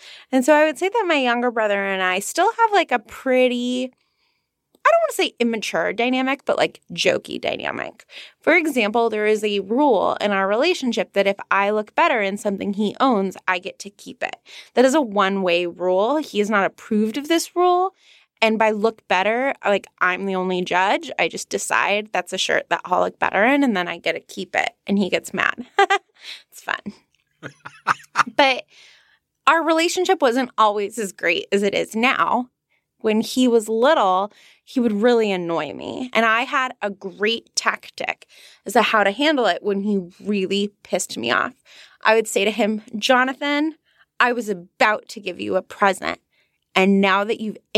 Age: 20-39